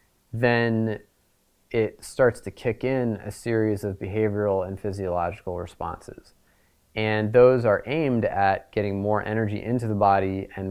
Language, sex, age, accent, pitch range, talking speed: English, male, 30-49, American, 95-110 Hz, 140 wpm